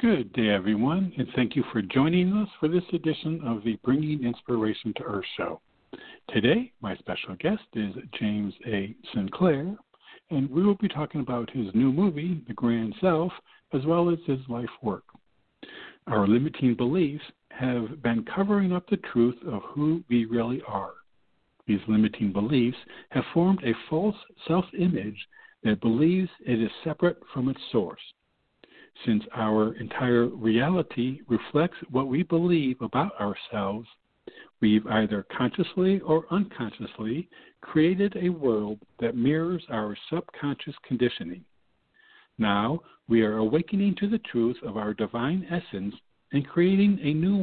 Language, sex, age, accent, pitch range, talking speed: English, male, 60-79, American, 115-170 Hz, 145 wpm